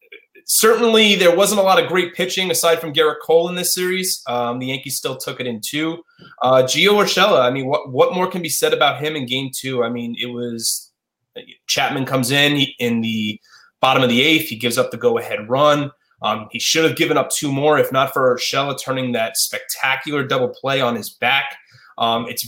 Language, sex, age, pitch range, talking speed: English, male, 20-39, 125-160 Hz, 215 wpm